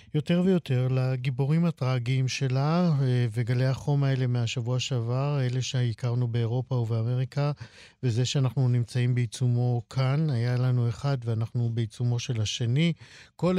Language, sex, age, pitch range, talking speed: Hebrew, male, 50-69, 120-145 Hz, 120 wpm